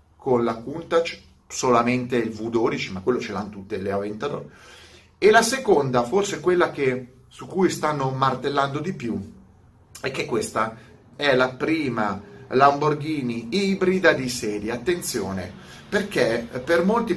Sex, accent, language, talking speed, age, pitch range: male, native, Italian, 135 wpm, 40-59, 110-160 Hz